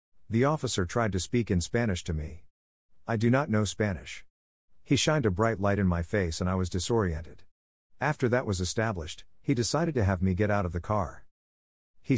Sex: male